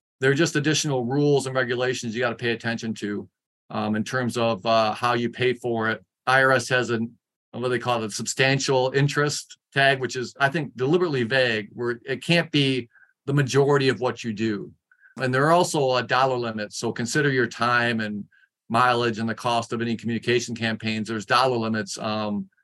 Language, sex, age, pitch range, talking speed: Polish, male, 40-59, 110-135 Hz, 195 wpm